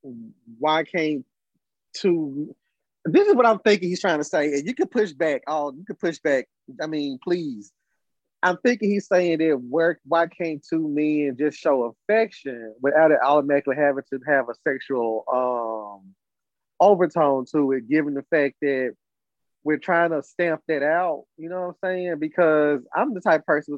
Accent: American